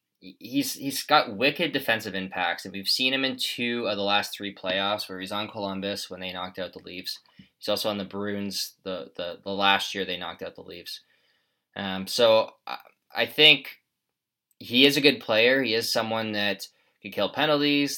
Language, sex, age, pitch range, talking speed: English, male, 20-39, 95-115 Hz, 195 wpm